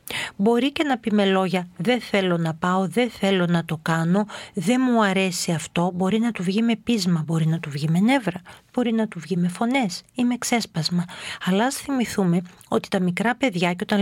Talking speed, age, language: 200 wpm, 40-59, Greek